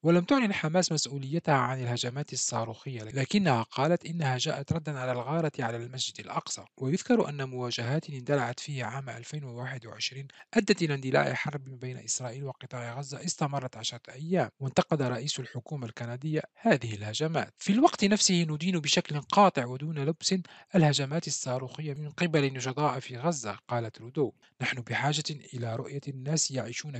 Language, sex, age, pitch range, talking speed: Arabic, male, 40-59, 125-160 Hz, 140 wpm